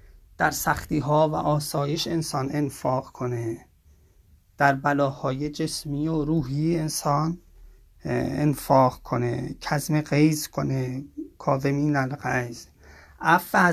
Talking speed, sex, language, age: 95 wpm, male, English, 30-49